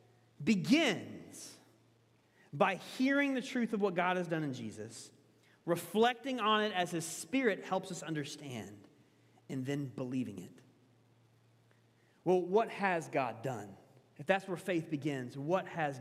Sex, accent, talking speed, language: male, American, 140 wpm, English